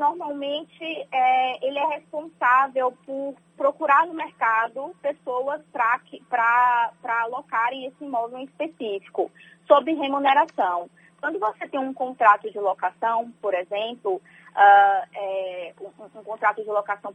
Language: Portuguese